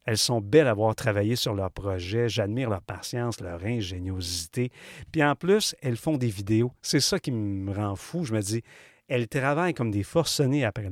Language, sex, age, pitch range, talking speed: French, male, 40-59, 110-145 Hz, 200 wpm